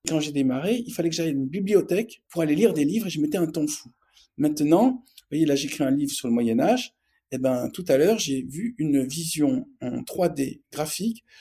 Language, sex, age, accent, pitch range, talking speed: French, male, 50-69, French, 145-215 Hz, 225 wpm